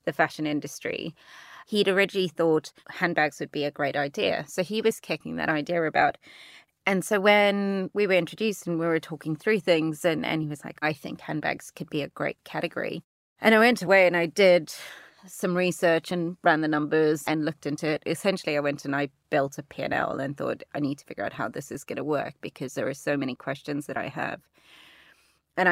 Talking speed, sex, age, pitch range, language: 215 wpm, female, 30-49, 150-185 Hz, English